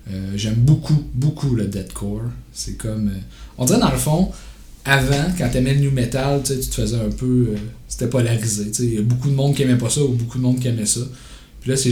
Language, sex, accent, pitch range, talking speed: French, male, Canadian, 110-140 Hz, 245 wpm